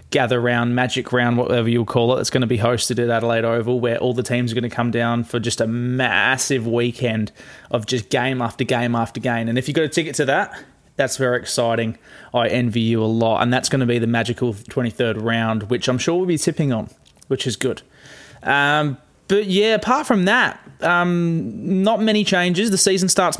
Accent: Australian